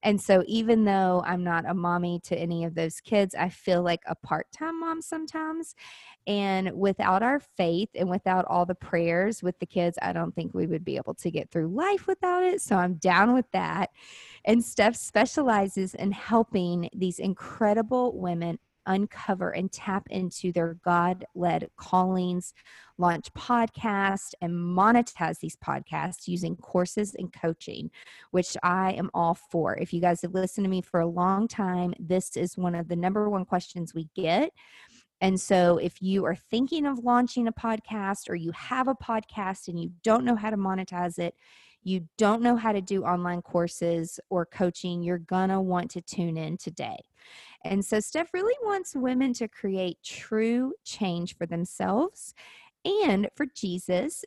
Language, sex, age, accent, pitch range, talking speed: English, female, 20-39, American, 180-240 Hz, 175 wpm